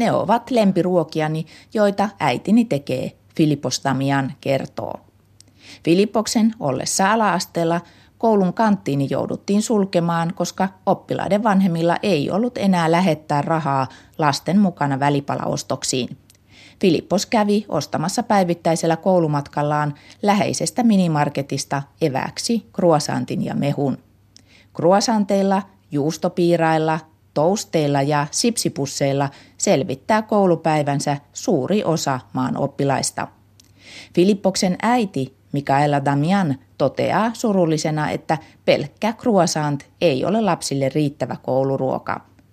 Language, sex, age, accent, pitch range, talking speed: Finnish, female, 30-49, native, 140-195 Hz, 85 wpm